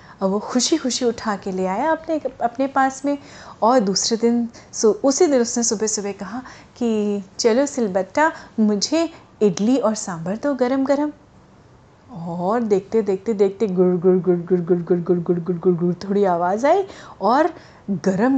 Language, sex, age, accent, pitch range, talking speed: Hindi, female, 30-49, native, 205-280 Hz, 145 wpm